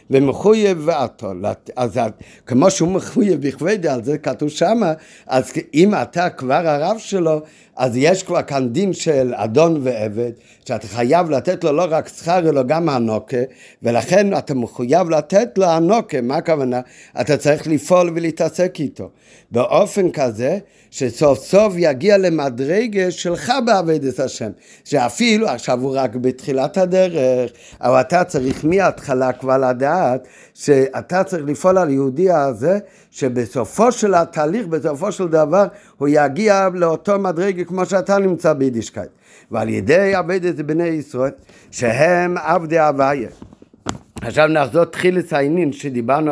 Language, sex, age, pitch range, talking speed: Hebrew, male, 50-69, 130-175 Hz, 135 wpm